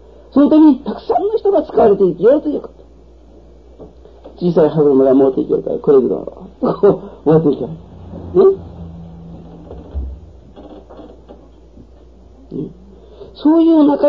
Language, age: Japanese, 50-69